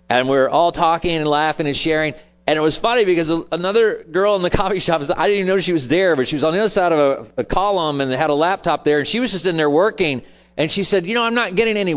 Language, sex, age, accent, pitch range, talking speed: English, male, 40-59, American, 160-235 Hz, 285 wpm